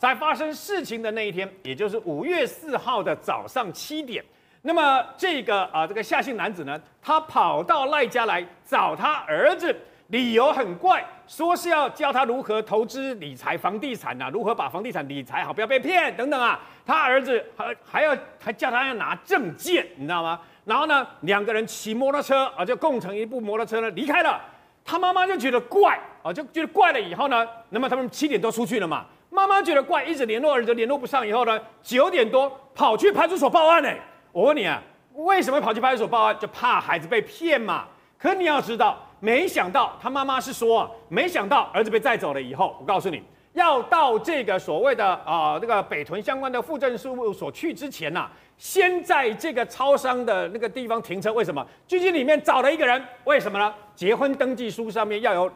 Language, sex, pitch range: Chinese, male, 225-315 Hz